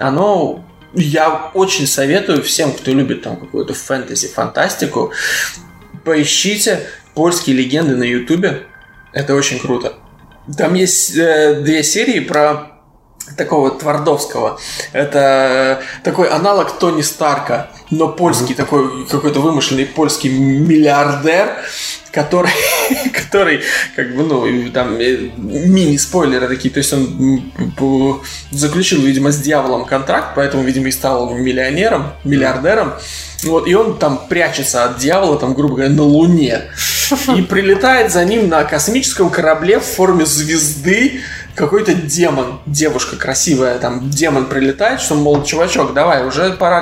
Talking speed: 125 wpm